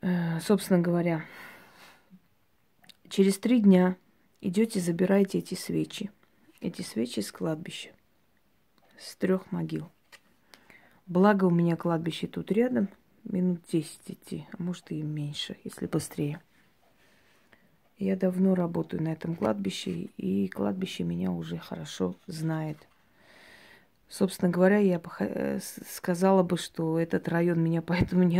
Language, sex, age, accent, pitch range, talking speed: Russian, female, 20-39, native, 160-190 Hz, 115 wpm